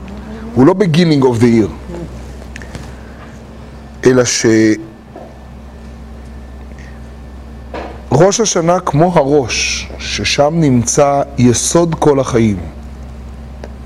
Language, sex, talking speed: Hebrew, male, 70 wpm